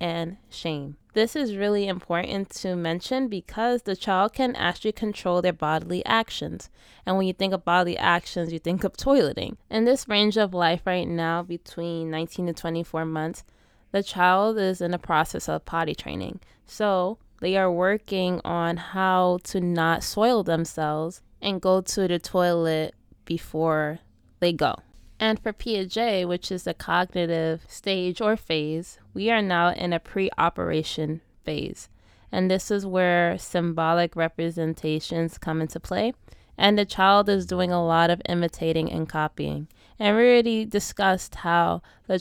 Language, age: English, 20-39